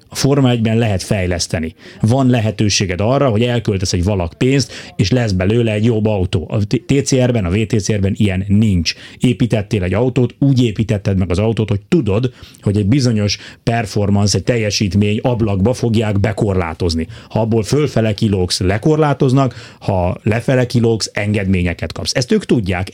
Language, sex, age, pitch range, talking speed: Hungarian, male, 30-49, 100-120 Hz, 150 wpm